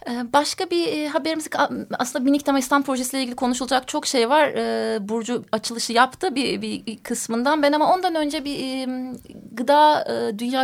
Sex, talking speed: female, 140 wpm